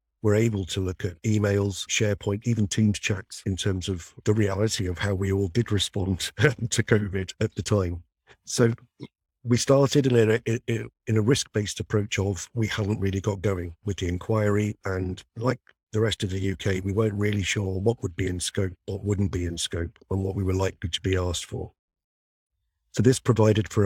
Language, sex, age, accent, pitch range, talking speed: English, male, 50-69, British, 90-105 Hz, 195 wpm